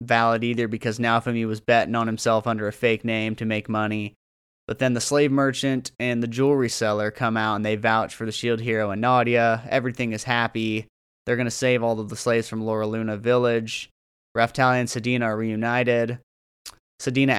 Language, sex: English, male